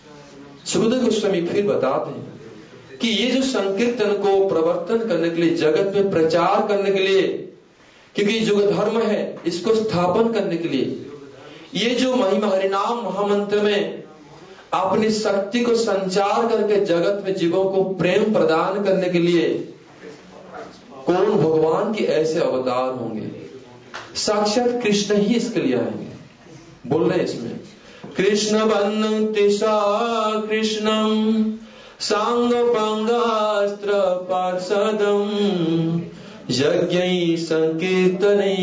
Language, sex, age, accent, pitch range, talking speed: English, male, 40-59, Indian, 165-215 Hz, 105 wpm